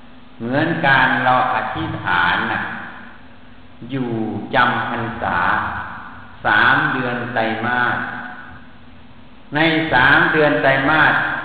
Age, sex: 60-79, male